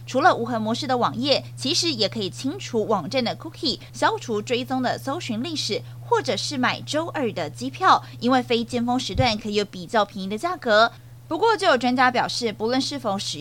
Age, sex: 30-49, female